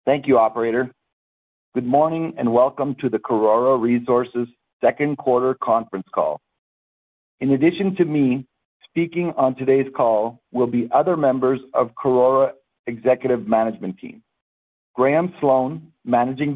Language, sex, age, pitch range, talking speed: English, male, 50-69, 115-145 Hz, 125 wpm